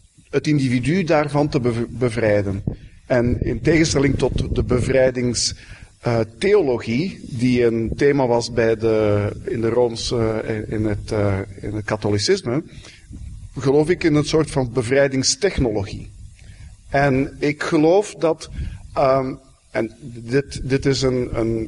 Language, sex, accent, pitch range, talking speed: Dutch, male, Dutch, 115-155 Hz, 115 wpm